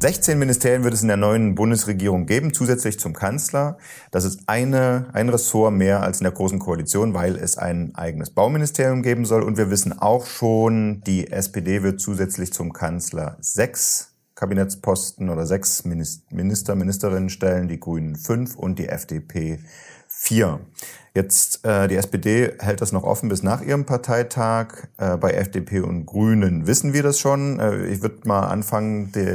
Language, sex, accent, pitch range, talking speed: German, male, German, 90-110 Hz, 170 wpm